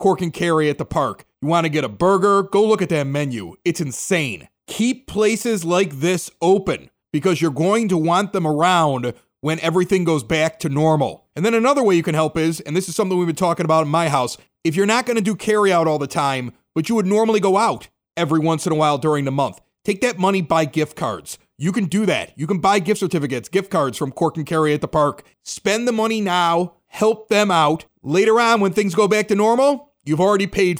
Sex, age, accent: male, 30-49, American